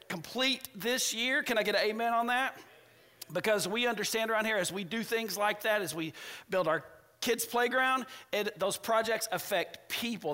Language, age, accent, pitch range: English, 40-59, American, 170-220 Hz